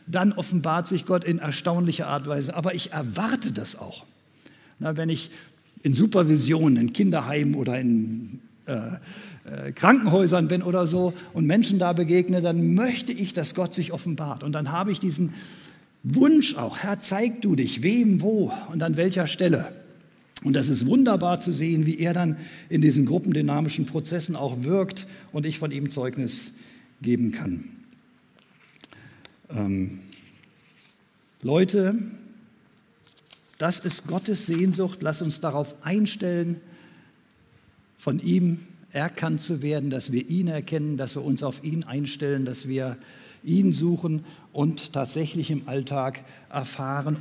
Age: 60-79